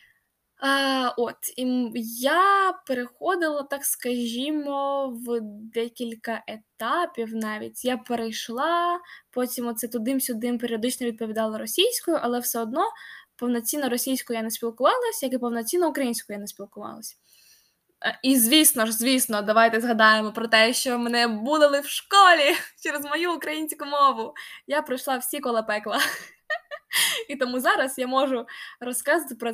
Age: 10-29